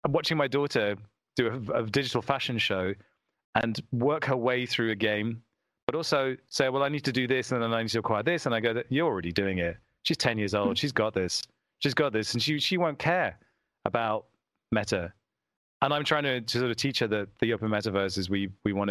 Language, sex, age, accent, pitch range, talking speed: English, male, 30-49, British, 105-130 Hz, 235 wpm